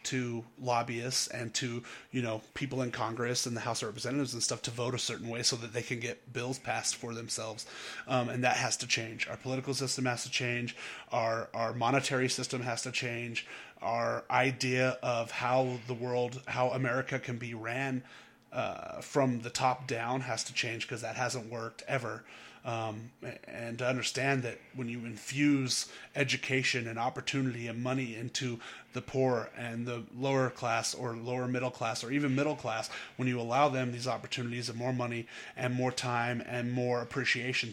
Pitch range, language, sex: 120-130 Hz, English, male